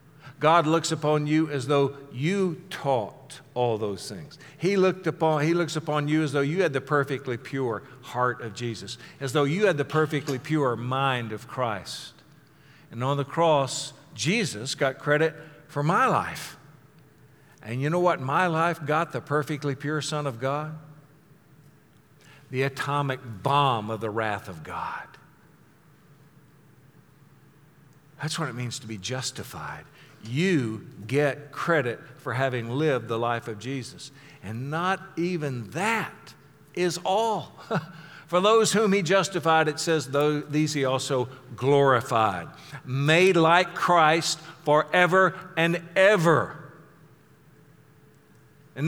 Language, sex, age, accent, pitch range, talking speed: English, male, 50-69, American, 135-165 Hz, 135 wpm